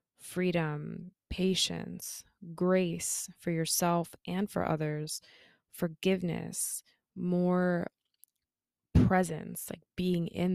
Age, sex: 20-39, female